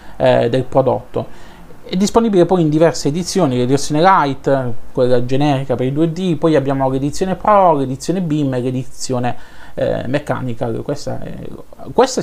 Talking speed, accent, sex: 130 wpm, native, male